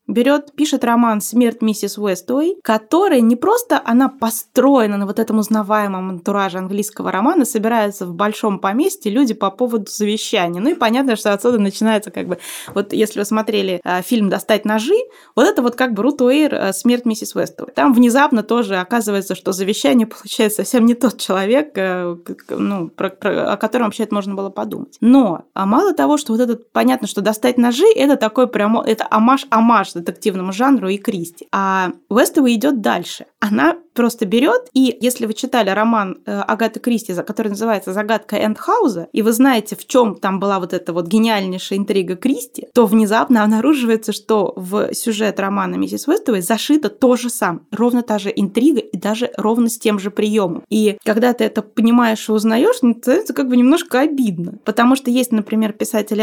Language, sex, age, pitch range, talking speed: Russian, female, 20-39, 205-250 Hz, 180 wpm